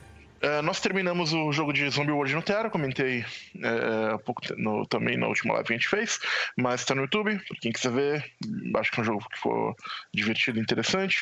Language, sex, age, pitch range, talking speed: Portuguese, male, 20-39, 120-155 Hz, 215 wpm